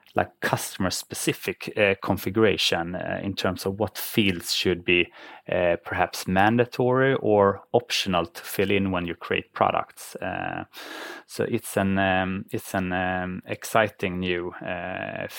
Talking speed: 135 wpm